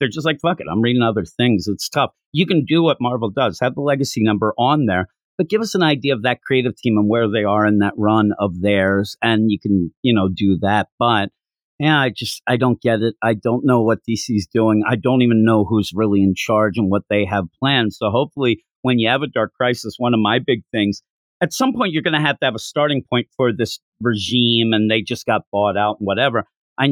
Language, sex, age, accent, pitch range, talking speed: English, male, 50-69, American, 105-125 Hz, 250 wpm